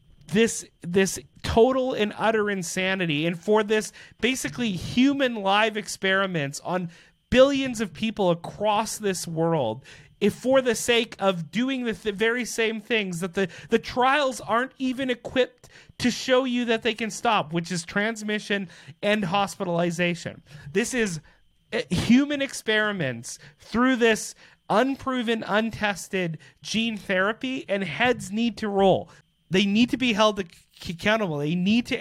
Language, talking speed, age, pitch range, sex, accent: English, 140 wpm, 30-49, 170-220 Hz, male, American